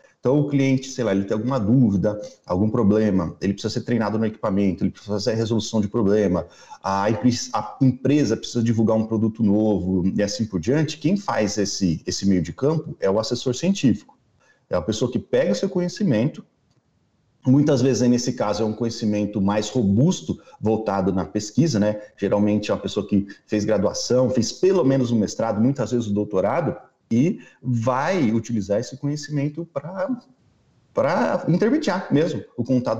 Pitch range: 105-145 Hz